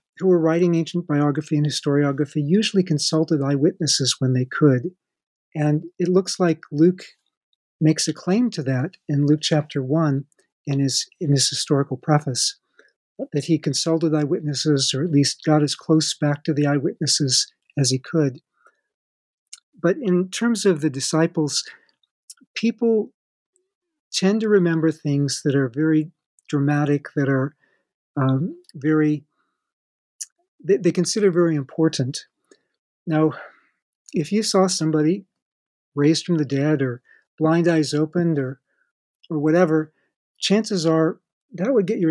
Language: English